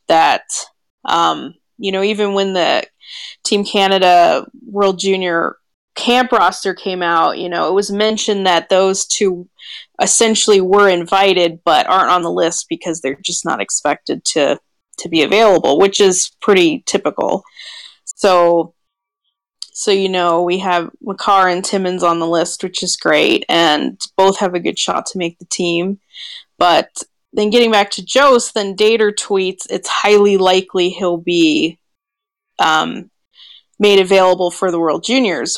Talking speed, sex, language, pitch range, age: 150 wpm, female, English, 180-215 Hz, 20-39